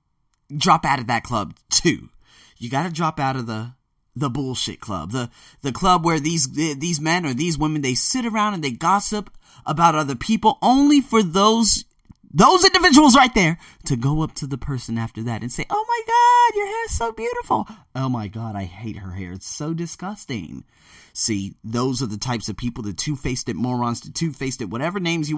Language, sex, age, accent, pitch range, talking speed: English, male, 30-49, American, 115-190 Hz, 210 wpm